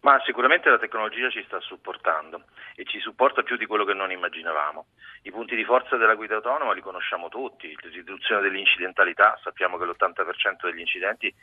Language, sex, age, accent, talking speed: Italian, male, 40-59, native, 180 wpm